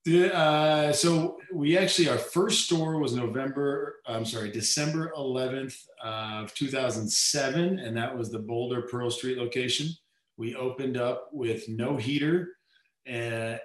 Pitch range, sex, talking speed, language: 110-135 Hz, male, 130 wpm, English